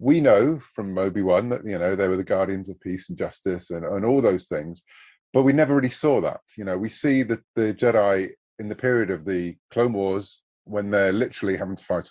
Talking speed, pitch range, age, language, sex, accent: 230 wpm, 95-125 Hz, 30-49, English, male, British